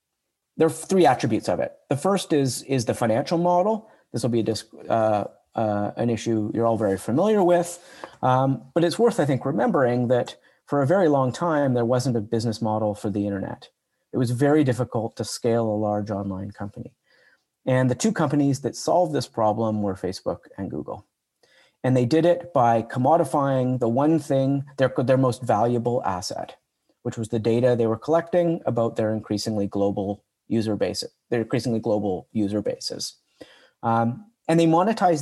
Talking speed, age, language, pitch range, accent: 175 wpm, 40-59, English, 115-145 Hz, American